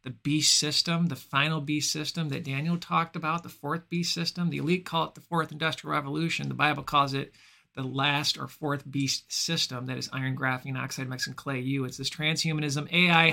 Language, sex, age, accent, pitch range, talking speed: English, male, 50-69, American, 140-165 Hz, 205 wpm